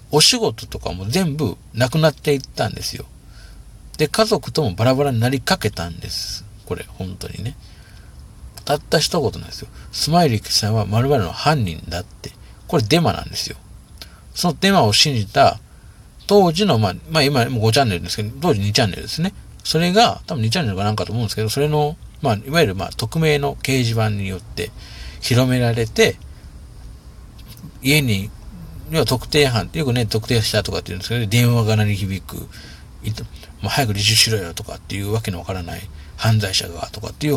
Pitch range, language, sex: 95-140 Hz, Japanese, male